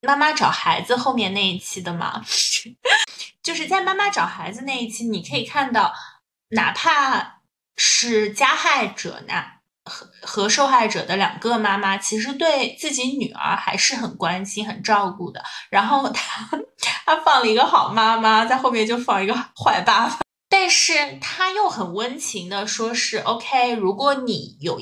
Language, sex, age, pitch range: Chinese, female, 20-39, 190-250 Hz